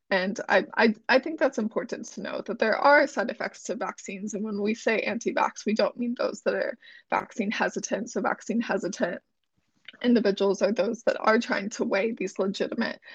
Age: 20-39